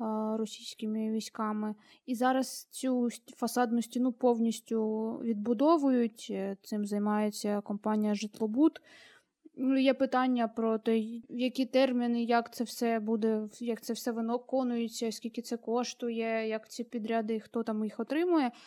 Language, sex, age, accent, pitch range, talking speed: Ukrainian, female, 20-39, native, 225-255 Hz, 120 wpm